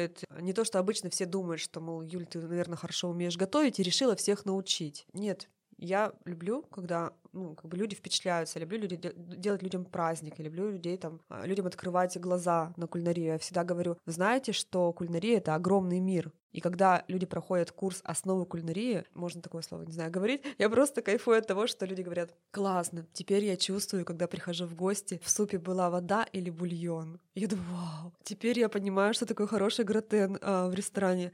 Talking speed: 190 wpm